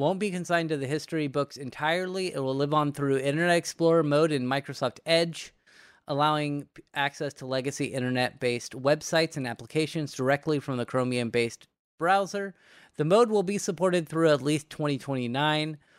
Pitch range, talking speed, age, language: 125-160 Hz, 160 wpm, 30-49, English